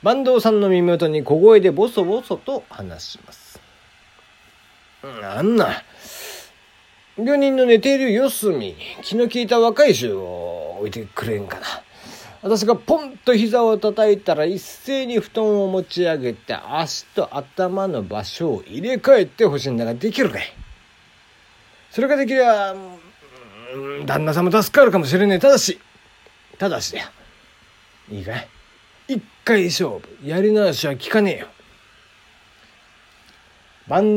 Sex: male